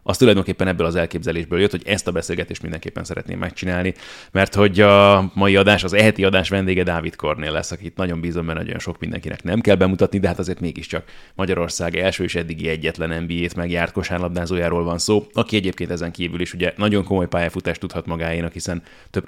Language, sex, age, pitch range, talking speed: Hungarian, male, 30-49, 85-100 Hz, 190 wpm